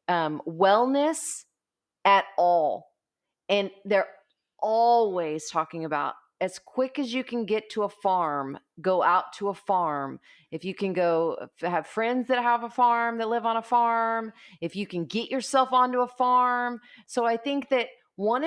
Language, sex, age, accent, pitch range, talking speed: English, female, 30-49, American, 175-230 Hz, 165 wpm